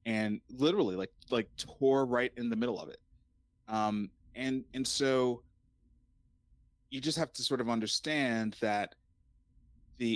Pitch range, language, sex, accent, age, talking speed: 110-130 Hz, English, male, American, 30-49, 140 wpm